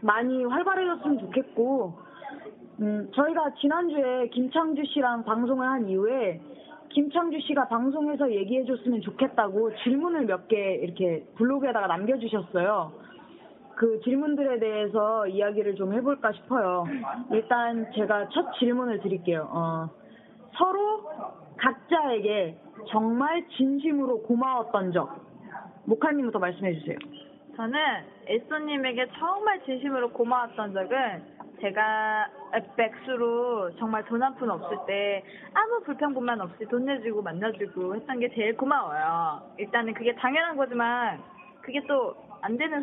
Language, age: Korean, 20-39